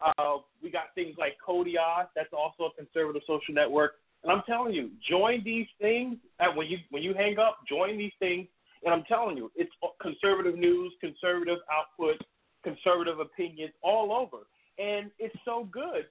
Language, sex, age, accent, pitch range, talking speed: English, male, 30-49, American, 150-205 Hz, 170 wpm